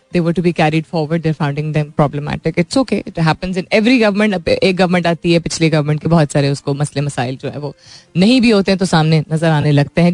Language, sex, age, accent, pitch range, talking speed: Hindi, female, 20-39, native, 155-225 Hz, 250 wpm